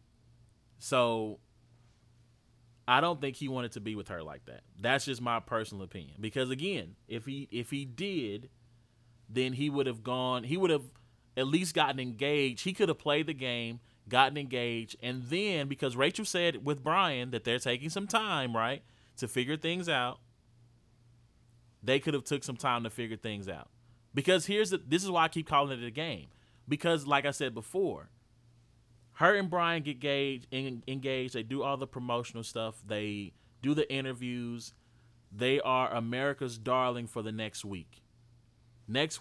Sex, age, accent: male, 30-49, American